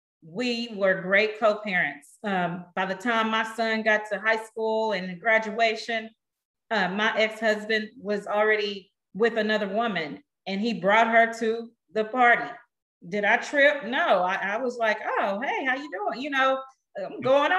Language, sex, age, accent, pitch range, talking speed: English, female, 40-59, American, 210-255 Hz, 165 wpm